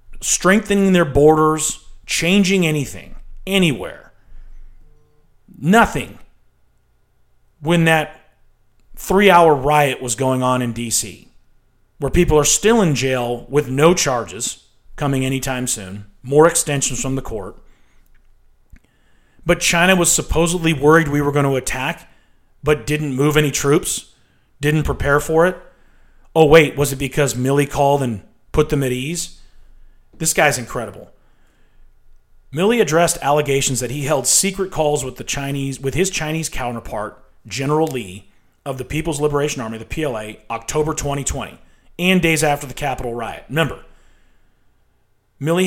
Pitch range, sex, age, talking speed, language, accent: 125-160 Hz, male, 40-59, 135 wpm, English, American